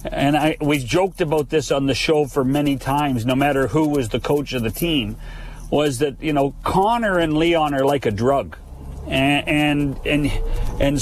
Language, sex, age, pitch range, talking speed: English, male, 50-69, 130-155 Hz, 190 wpm